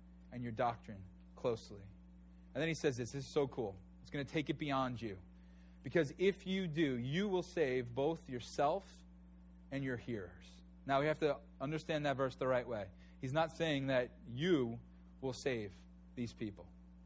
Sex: male